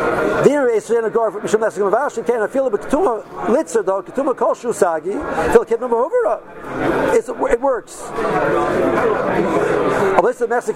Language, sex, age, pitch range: English, male, 50-69, 215-330 Hz